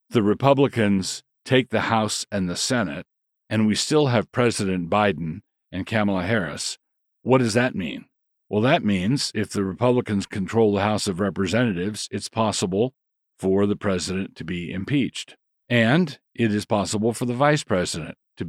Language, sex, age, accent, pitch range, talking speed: English, male, 50-69, American, 95-120 Hz, 160 wpm